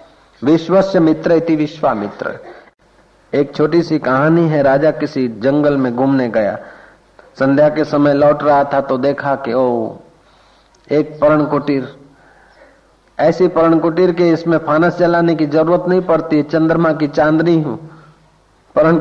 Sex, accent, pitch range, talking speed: male, native, 125-155 Hz, 140 wpm